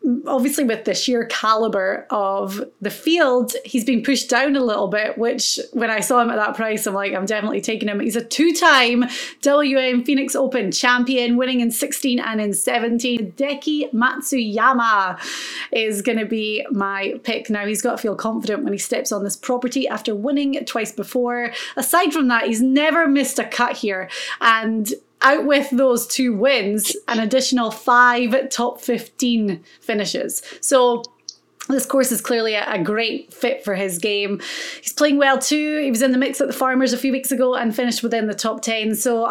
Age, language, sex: 30-49, English, female